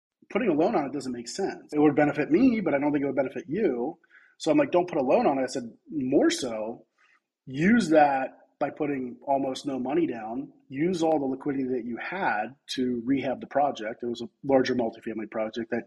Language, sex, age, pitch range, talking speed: English, male, 30-49, 120-145 Hz, 225 wpm